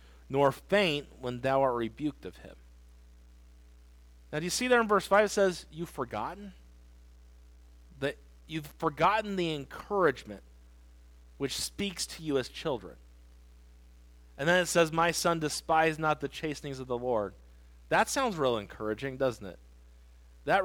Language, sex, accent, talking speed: English, male, American, 150 wpm